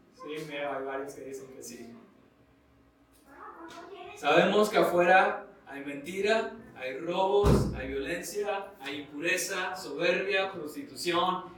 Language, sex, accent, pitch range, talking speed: Spanish, male, Mexican, 155-255 Hz, 110 wpm